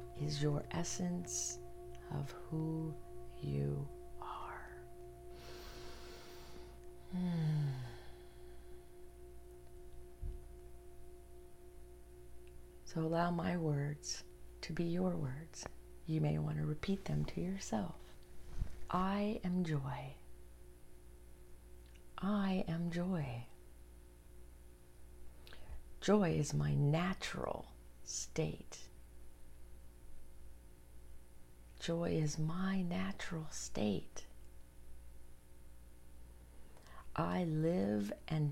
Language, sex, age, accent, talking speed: English, female, 40-59, American, 65 wpm